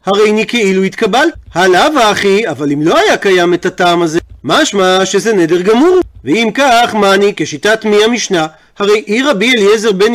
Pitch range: 200-245 Hz